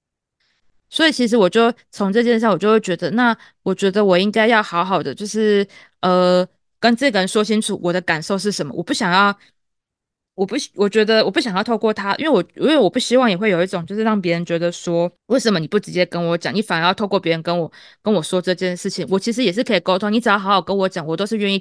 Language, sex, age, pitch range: Chinese, female, 20-39, 175-210 Hz